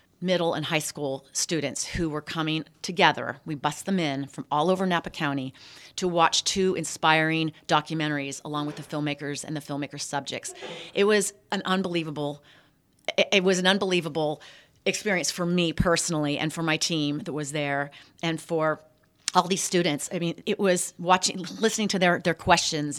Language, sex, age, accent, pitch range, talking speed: English, female, 40-59, American, 150-180 Hz, 170 wpm